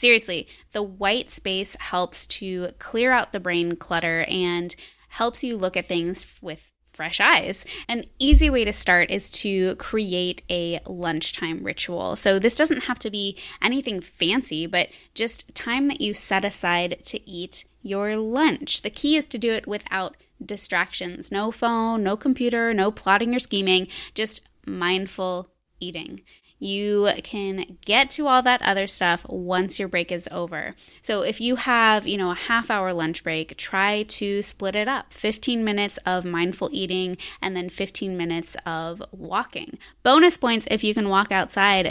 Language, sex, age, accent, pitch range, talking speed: English, female, 10-29, American, 180-230 Hz, 165 wpm